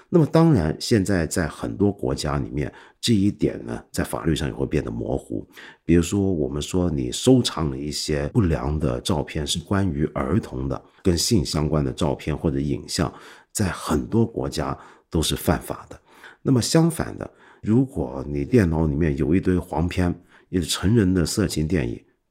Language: Chinese